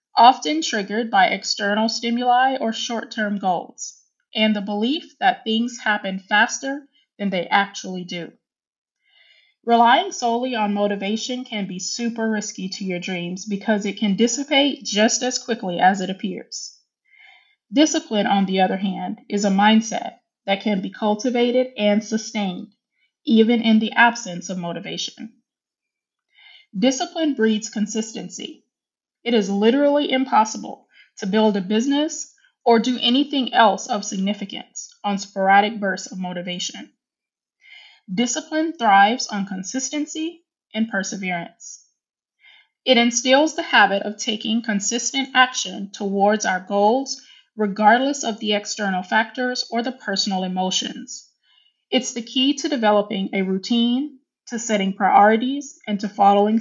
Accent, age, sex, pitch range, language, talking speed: American, 20-39, female, 200-265 Hz, English, 130 wpm